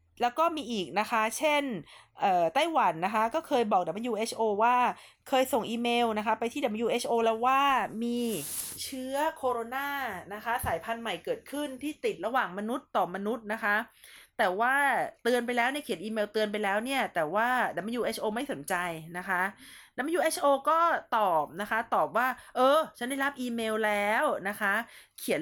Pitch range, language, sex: 200-265 Hz, Thai, female